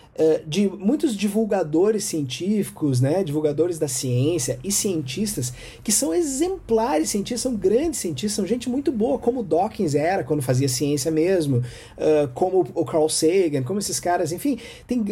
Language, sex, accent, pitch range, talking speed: Portuguese, male, Brazilian, 165-245 Hz, 150 wpm